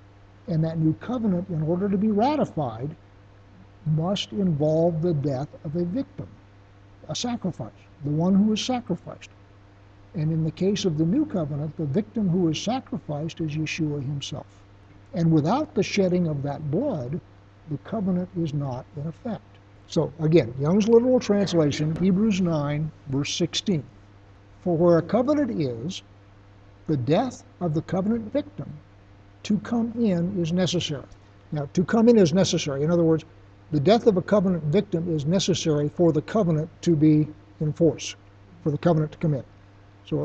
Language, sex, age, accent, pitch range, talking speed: English, male, 60-79, American, 120-185 Hz, 160 wpm